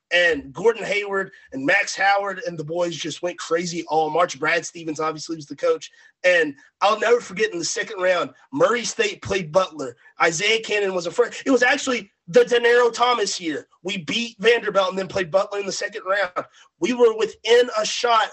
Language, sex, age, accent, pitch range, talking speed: English, male, 30-49, American, 165-205 Hz, 200 wpm